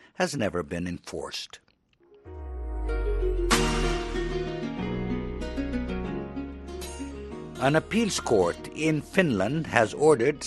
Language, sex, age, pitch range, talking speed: English, male, 60-79, 105-160 Hz, 65 wpm